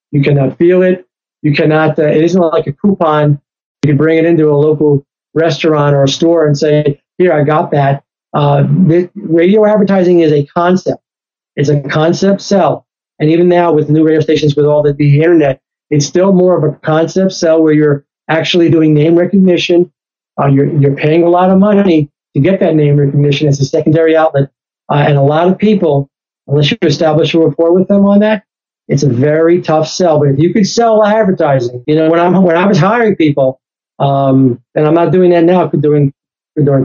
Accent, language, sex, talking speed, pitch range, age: American, English, male, 205 wpm, 145-175 Hz, 40-59